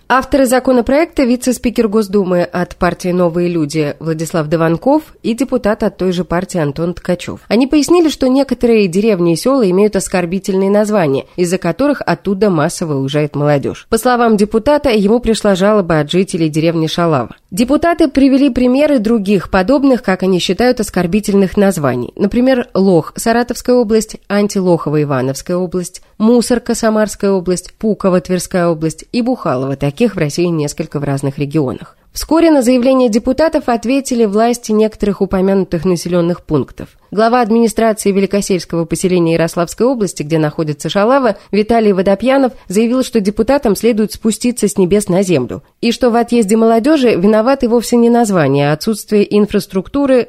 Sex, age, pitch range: female, 20-39, 175-240 Hz